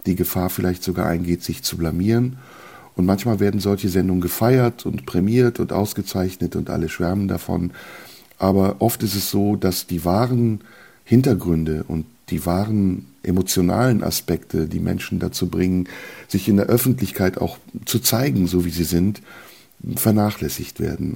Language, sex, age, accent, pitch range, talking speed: German, male, 50-69, German, 85-105 Hz, 150 wpm